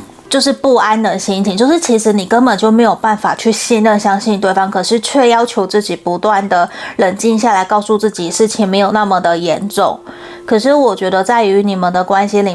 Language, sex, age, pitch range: Chinese, female, 20-39, 195-235 Hz